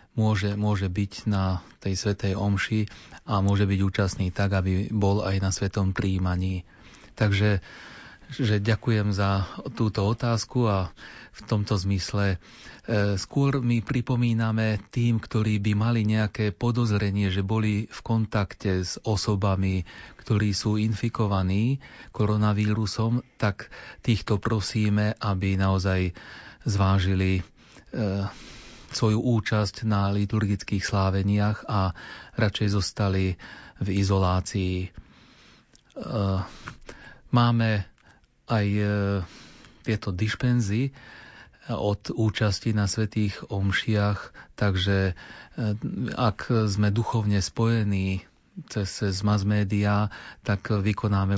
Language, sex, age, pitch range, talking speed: Slovak, male, 30-49, 95-110 Hz, 100 wpm